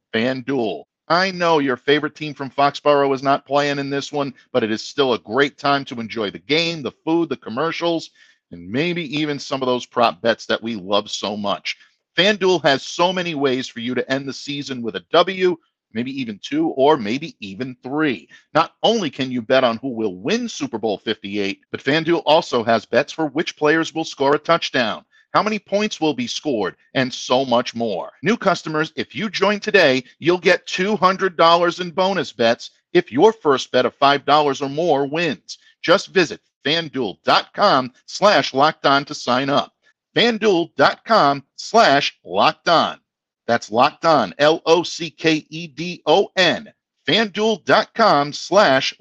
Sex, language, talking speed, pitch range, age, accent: male, English, 175 wpm, 130-170 Hz, 50-69, American